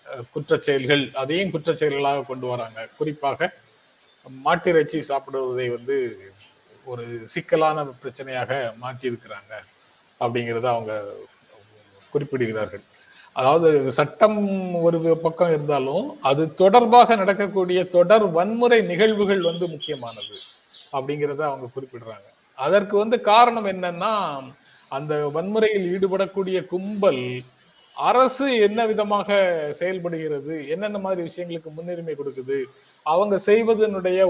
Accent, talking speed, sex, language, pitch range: native, 90 wpm, male, Tamil, 140-200 Hz